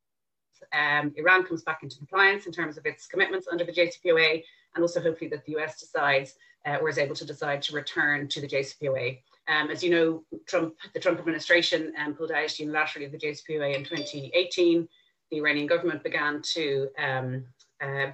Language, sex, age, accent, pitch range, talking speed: English, female, 30-49, Irish, 145-175 Hz, 185 wpm